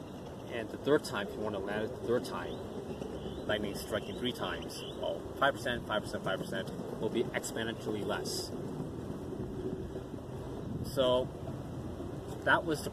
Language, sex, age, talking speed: English, male, 20-39, 135 wpm